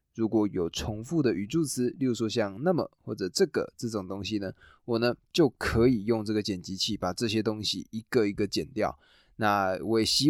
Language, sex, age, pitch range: Chinese, male, 20-39, 105-125 Hz